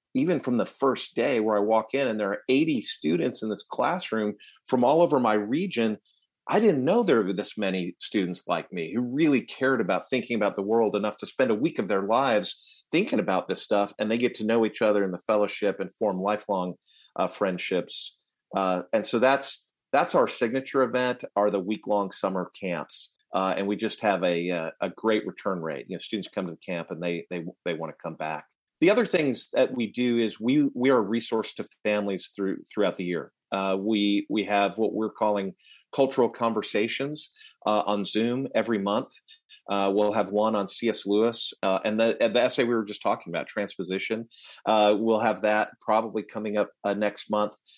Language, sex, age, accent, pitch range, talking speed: English, male, 40-59, American, 95-115 Hz, 205 wpm